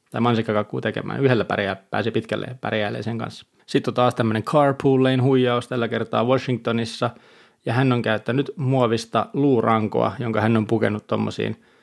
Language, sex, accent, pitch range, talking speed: Finnish, male, native, 115-135 Hz, 140 wpm